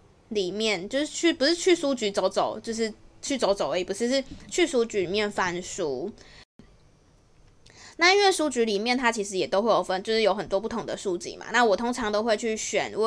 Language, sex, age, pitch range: Chinese, female, 20-39, 195-250 Hz